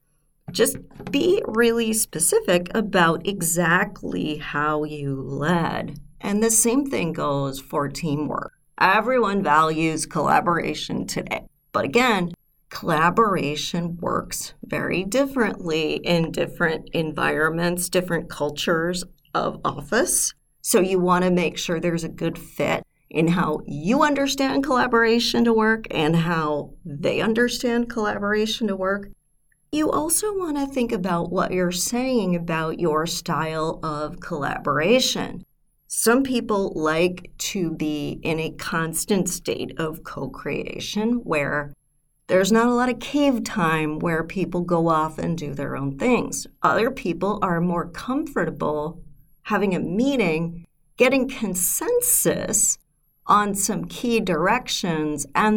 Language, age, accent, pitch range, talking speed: English, 40-59, American, 160-225 Hz, 125 wpm